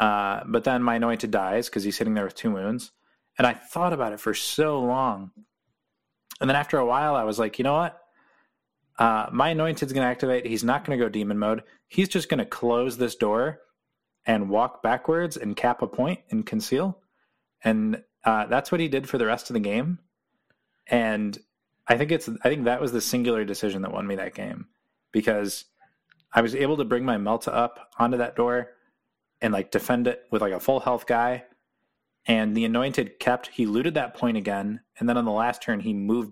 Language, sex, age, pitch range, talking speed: English, male, 20-39, 110-135 Hz, 210 wpm